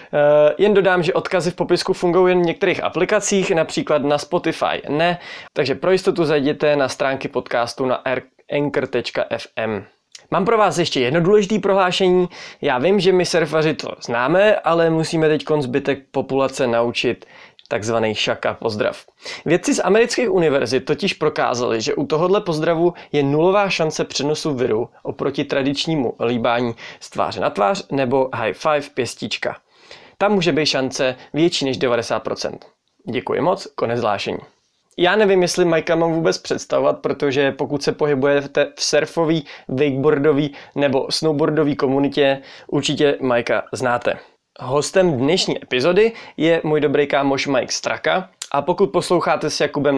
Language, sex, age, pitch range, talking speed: Czech, male, 20-39, 135-175 Hz, 145 wpm